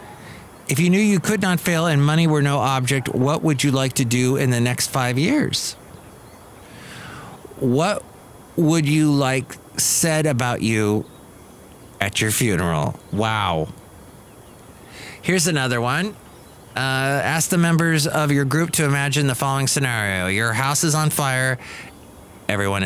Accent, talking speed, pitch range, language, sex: American, 145 wpm, 115-155 Hz, English, male